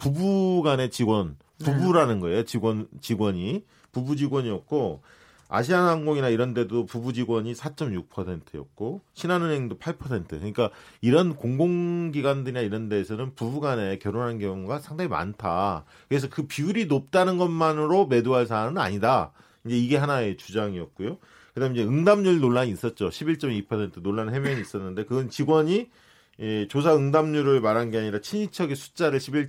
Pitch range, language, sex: 110-155 Hz, Korean, male